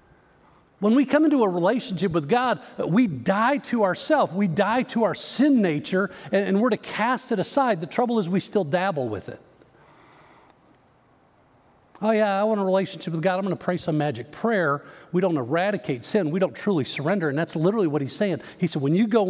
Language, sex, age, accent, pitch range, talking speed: English, male, 50-69, American, 175-225 Hz, 205 wpm